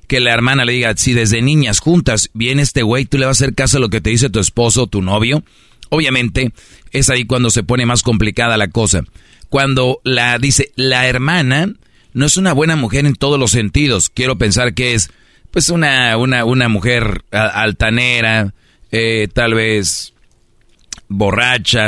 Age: 40-59